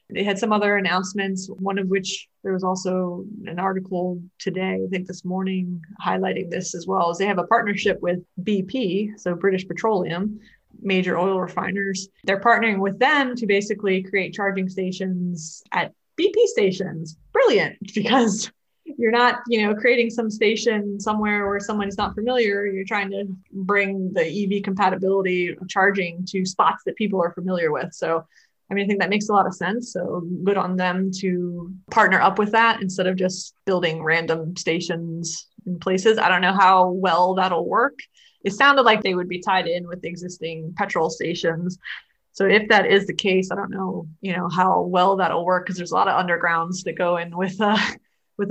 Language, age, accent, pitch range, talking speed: English, 20-39, American, 180-205 Hz, 185 wpm